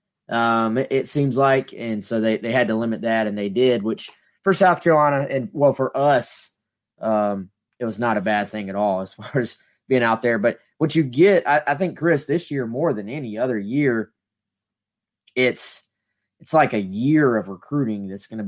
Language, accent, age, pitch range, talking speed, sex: English, American, 20-39, 105-135 Hz, 205 wpm, male